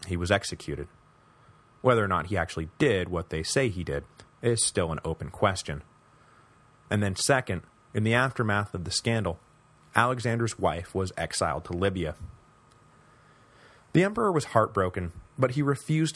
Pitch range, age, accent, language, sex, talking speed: 90-125 Hz, 30-49, American, English, male, 150 wpm